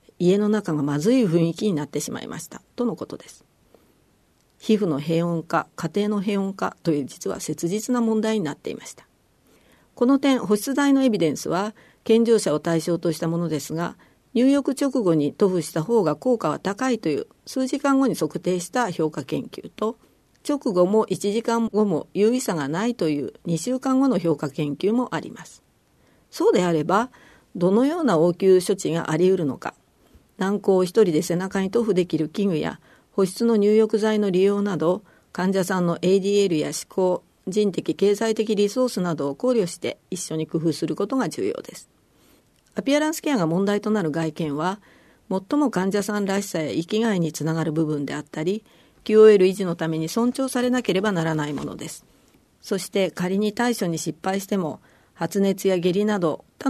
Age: 50-69